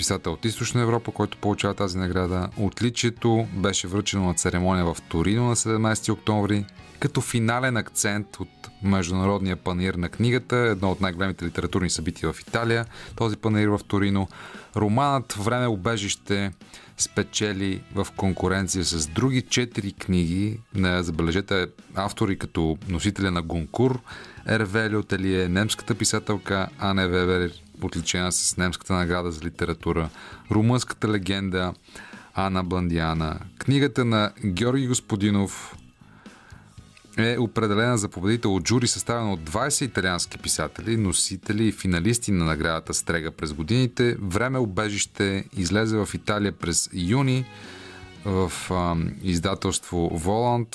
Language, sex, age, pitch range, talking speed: Bulgarian, male, 30-49, 90-110 Hz, 120 wpm